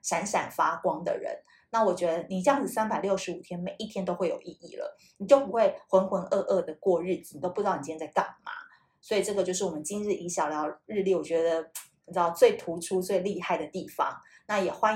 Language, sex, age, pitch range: Chinese, female, 20-39, 180-255 Hz